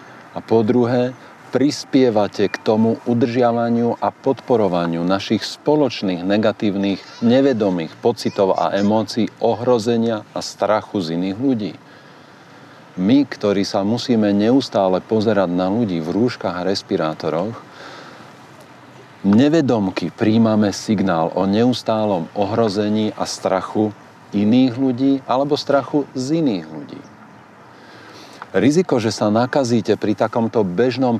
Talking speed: 105 wpm